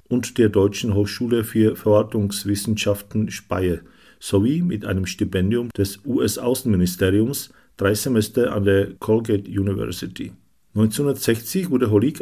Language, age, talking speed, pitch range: Czech, 50-69, 110 wpm, 100-115 Hz